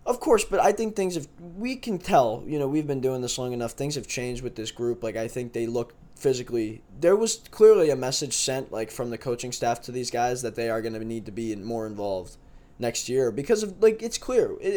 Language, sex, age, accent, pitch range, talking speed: English, male, 20-39, American, 120-165 Hz, 250 wpm